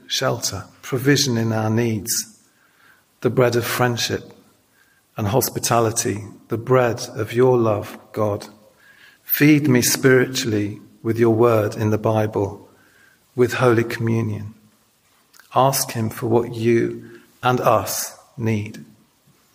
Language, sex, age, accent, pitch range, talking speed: English, male, 40-59, British, 110-125 Hz, 115 wpm